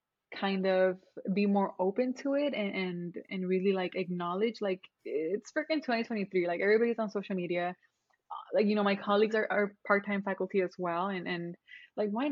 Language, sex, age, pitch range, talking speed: English, female, 20-39, 185-230 Hz, 180 wpm